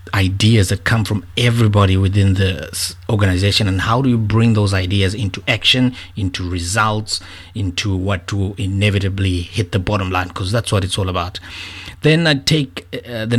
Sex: male